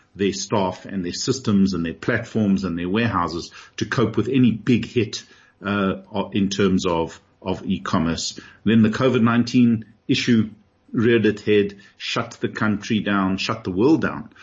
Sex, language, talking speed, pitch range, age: male, English, 160 wpm, 100-120 Hz, 50-69